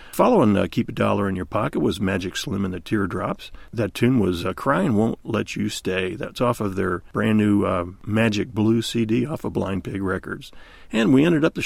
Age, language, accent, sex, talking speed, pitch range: 40-59, English, American, male, 210 wpm, 100-115 Hz